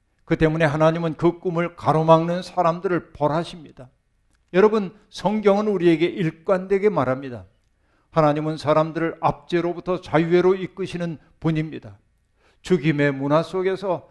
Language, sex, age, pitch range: Korean, male, 50-69, 135-180 Hz